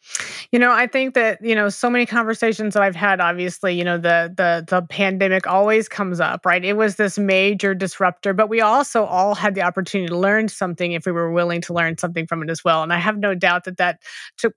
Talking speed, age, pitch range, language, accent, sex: 240 wpm, 30-49, 185-235 Hz, English, American, female